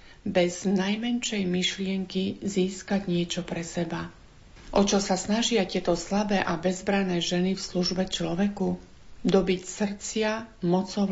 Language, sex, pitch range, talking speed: Slovak, female, 180-205 Hz, 120 wpm